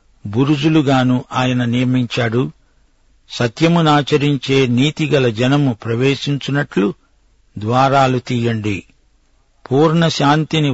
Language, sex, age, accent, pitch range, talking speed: Telugu, male, 50-69, native, 125-150 Hz, 55 wpm